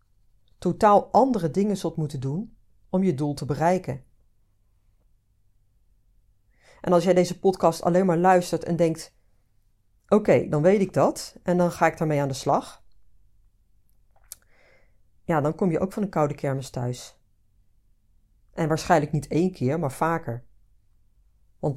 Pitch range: 105-170 Hz